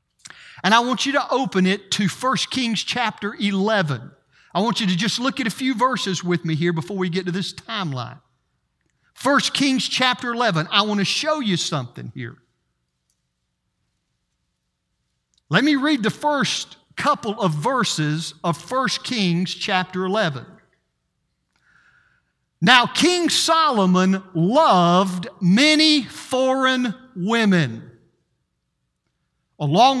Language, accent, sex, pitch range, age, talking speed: English, American, male, 175-255 Hz, 50-69, 125 wpm